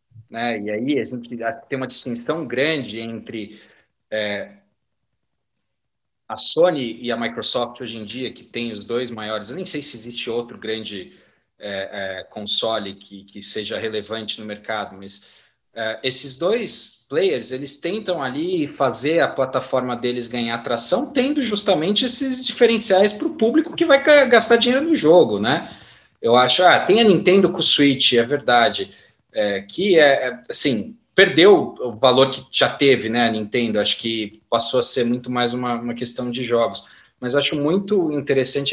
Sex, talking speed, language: male, 160 wpm, English